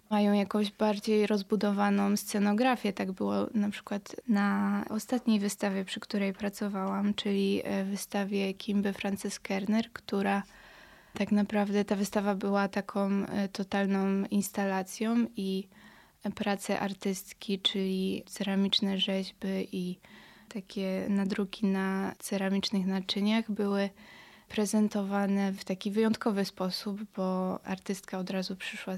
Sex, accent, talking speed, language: female, native, 110 wpm, Polish